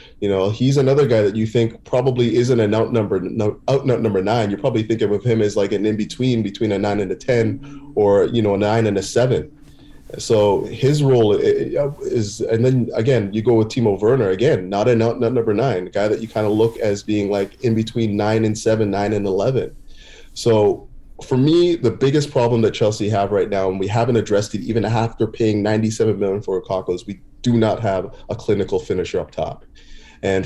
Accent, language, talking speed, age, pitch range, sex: American, English, 215 wpm, 30-49, 105-125 Hz, male